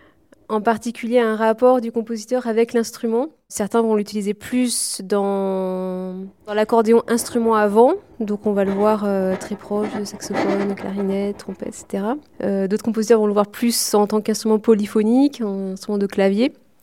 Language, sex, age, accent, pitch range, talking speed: French, female, 20-39, French, 200-235 Hz, 160 wpm